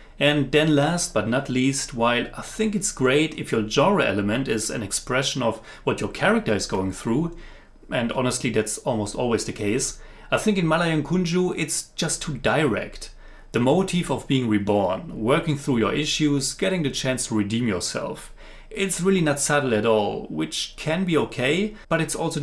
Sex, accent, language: male, German, English